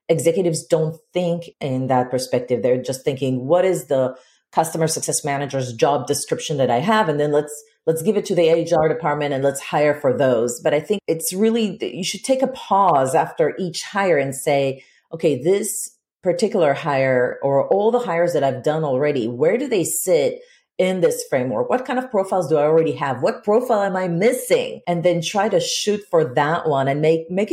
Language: English